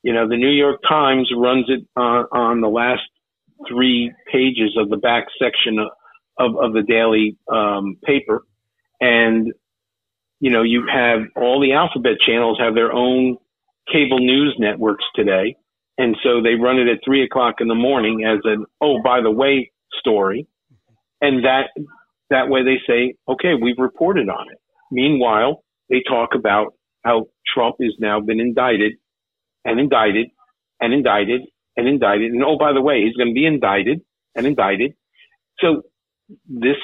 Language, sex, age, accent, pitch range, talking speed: English, male, 50-69, American, 110-130 Hz, 165 wpm